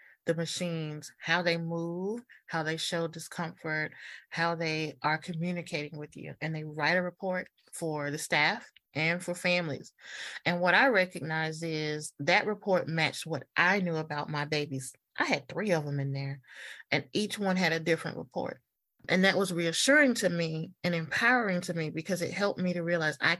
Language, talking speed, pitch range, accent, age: English, 180 wpm, 150-180 Hz, American, 30-49